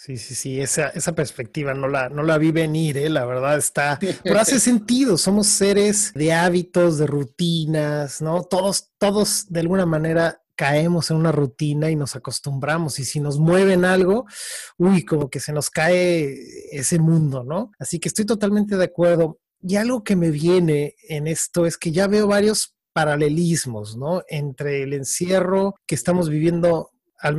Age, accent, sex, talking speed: 30-49, Mexican, male, 175 wpm